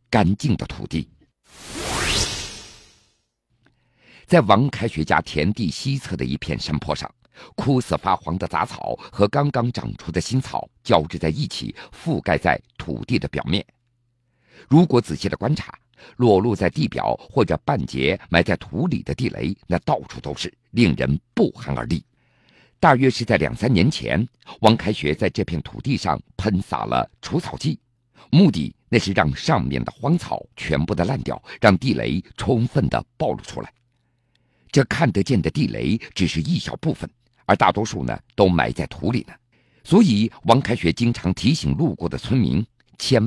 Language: Chinese